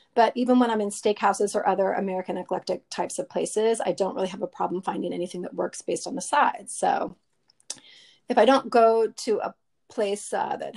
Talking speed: 205 wpm